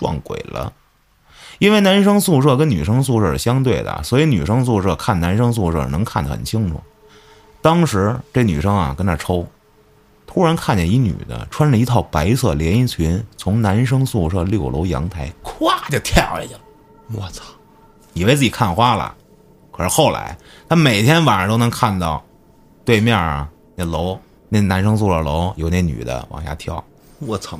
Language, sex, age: Chinese, male, 30-49